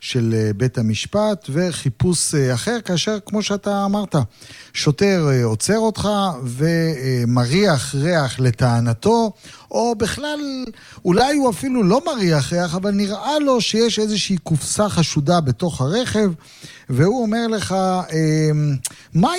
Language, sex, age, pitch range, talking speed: Hebrew, male, 40-59, 135-200 Hz, 110 wpm